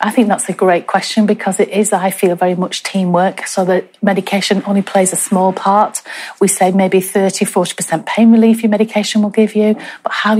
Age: 30-49